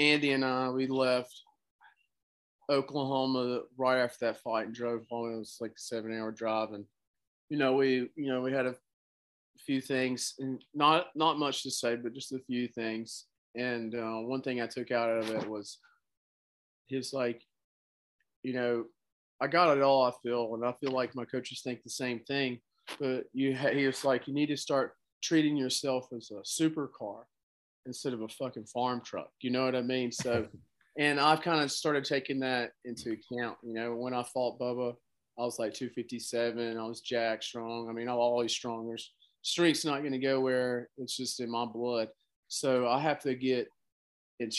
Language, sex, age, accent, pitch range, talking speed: English, male, 30-49, American, 115-135 Hz, 190 wpm